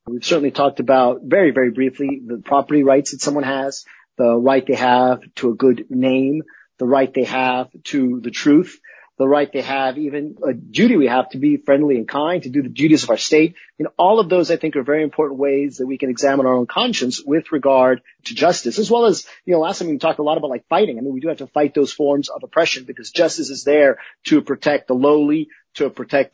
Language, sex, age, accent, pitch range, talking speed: English, male, 40-59, American, 135-180 Hz, 240 wpm